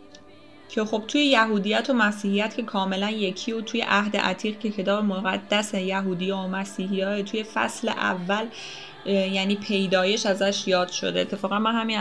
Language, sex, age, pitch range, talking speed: Persian, female, 10-29, 195-240 Hz, 150 wpm